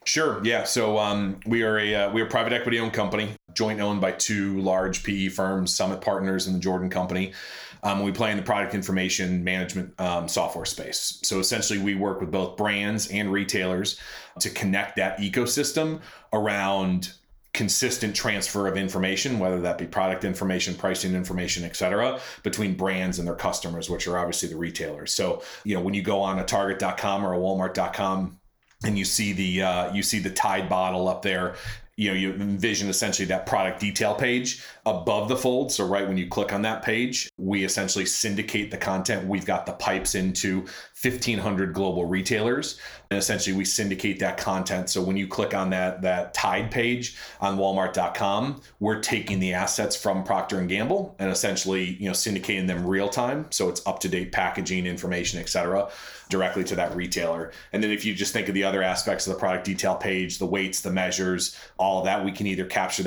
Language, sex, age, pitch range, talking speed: English, male, 30-49, 95-105 Hz, 190 wpm